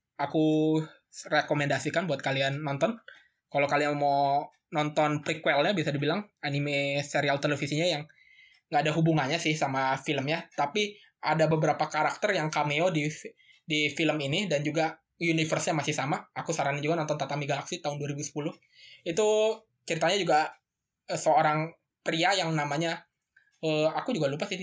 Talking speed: 140 wpm